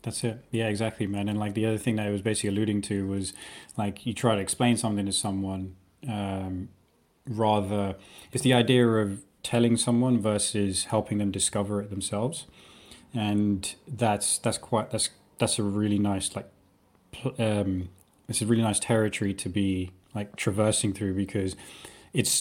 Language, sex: English, male